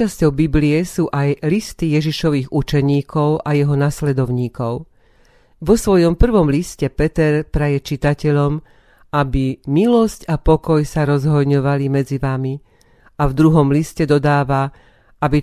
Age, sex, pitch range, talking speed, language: 40-59, female, 140-165 Hz, 120 wpm, Slovak